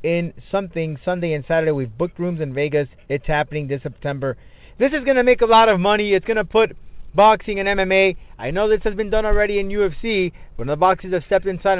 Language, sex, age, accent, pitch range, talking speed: English, male, 30-49, American, 155-220 Hz, 220 wpm